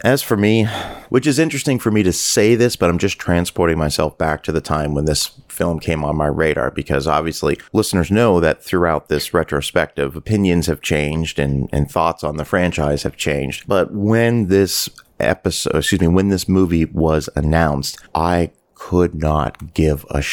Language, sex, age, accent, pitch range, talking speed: English, male, 30-49, American, 80-105 Hz, 185 wpm